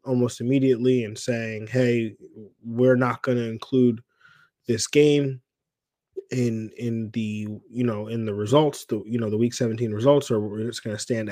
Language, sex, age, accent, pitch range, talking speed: English, male, 20-39, American, 110-130 Hz, 170 wpm